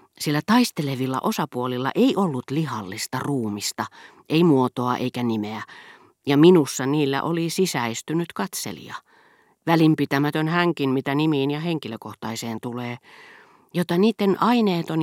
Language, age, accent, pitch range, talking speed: Finnish, 40-59, native, 125-175 Hz, 110 wpm